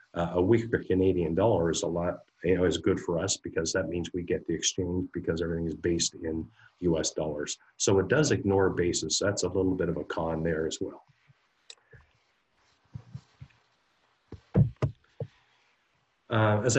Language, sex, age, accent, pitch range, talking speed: English, male, 50-69, American, 85-100 Hz, 160 wpm